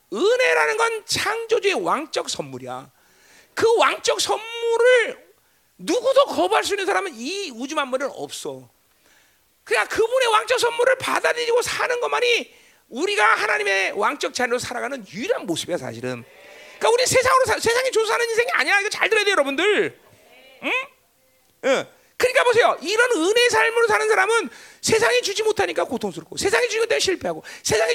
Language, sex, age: Korean, male, 40-59